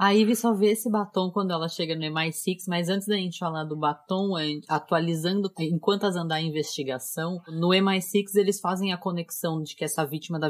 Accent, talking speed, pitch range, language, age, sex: Brazilian, 200 wpm, 155-185 Hz, Portuguese, 20-39, female